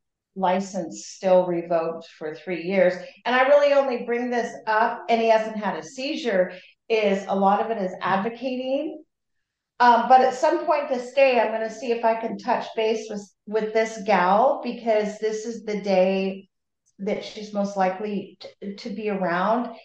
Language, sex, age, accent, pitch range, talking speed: English, female, 40-59, American, 185-225 Hz, 180 wpm